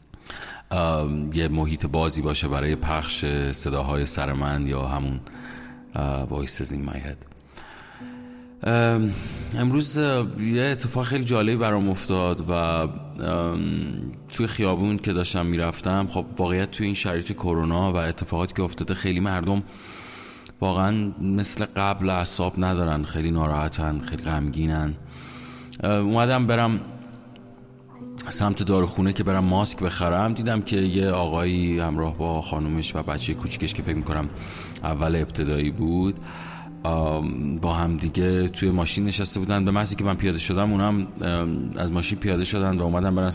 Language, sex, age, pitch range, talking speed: Persian, male, 30-49, 80-100 Hz, 130 wpm